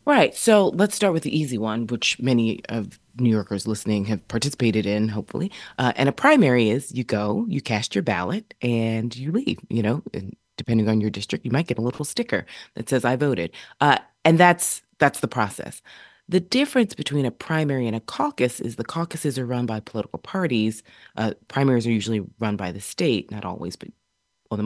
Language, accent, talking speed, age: English, American, 205 wpm, 30-49